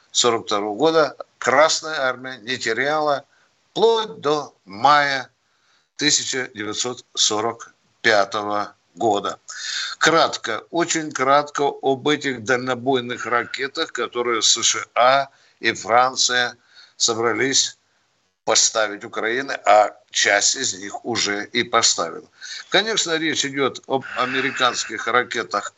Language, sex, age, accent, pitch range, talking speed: Russian, male, 60-79, native, 120-150 Hz, 90 wpm